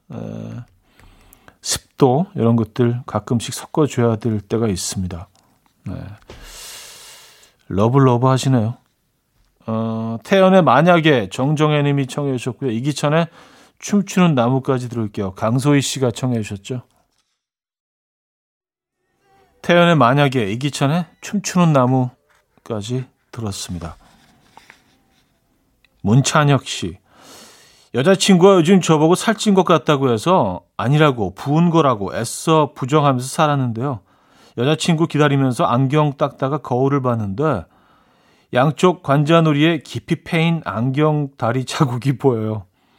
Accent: native